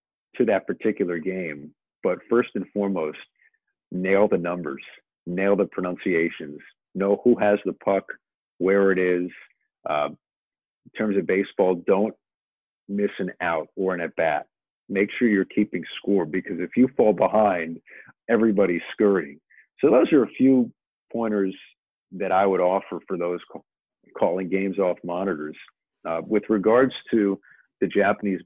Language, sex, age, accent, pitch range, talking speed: English, male, 50-69, American, 90-105 Hz, 145 wpm